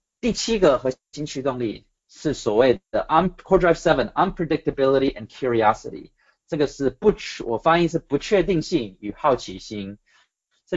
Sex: male